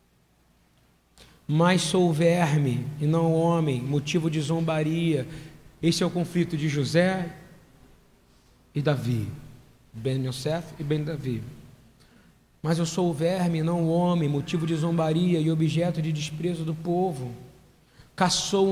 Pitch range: 150-180 Hz